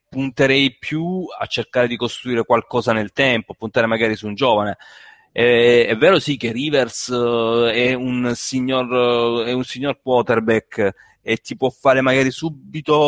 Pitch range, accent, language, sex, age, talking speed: 125-165 Hz, native, Italian, male, 30-49, 160 wpm